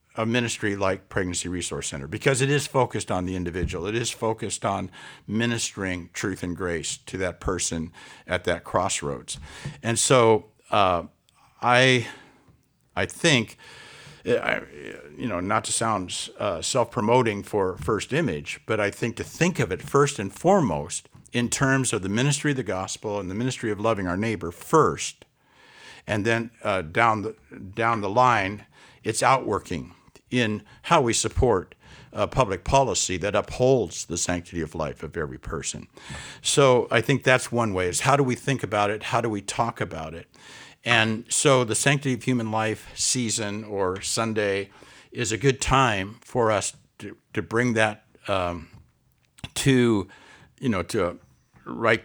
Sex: male